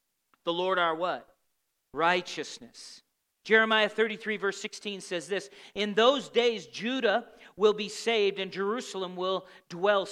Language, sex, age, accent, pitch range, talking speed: English, male, 40-59, American, 185-230 Hz, 130 wpm